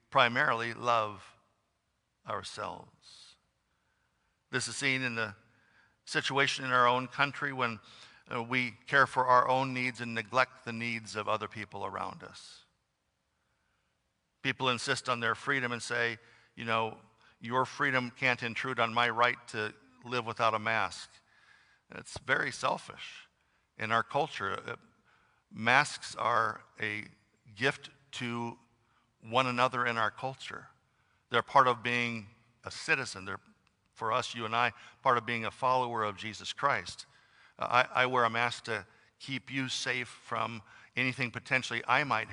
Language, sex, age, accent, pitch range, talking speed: English, male, 50-69, American, 115-130 Hz, 145 wpm